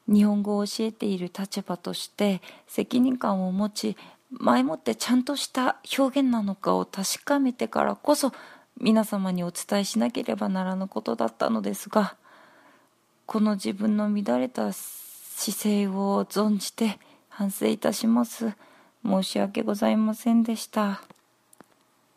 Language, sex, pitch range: English, female, 190-230 Hz